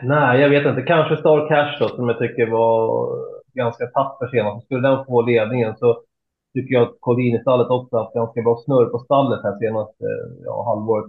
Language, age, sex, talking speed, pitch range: Swedish, 30-49, male, 195 wpm, 115-145 Hz